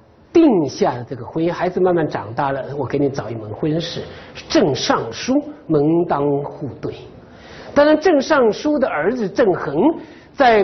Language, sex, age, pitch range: Chinese, male, 50-69, 135-220 Hz